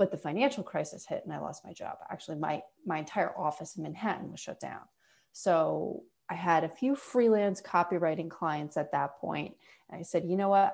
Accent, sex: American, female